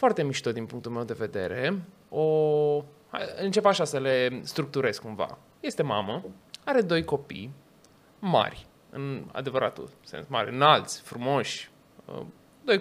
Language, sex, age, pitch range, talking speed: Romanian, male, 20-39, 145-195 Hz, 130 wpm